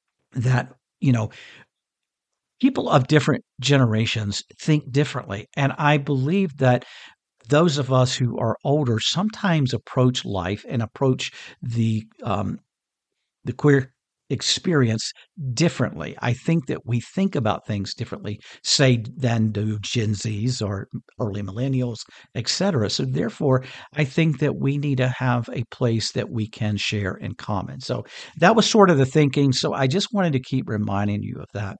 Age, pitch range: 50-69, 110-145 Hz